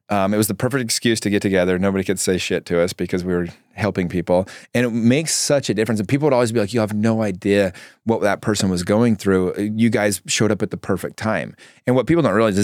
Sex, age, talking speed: male, 30-49, 260 wpm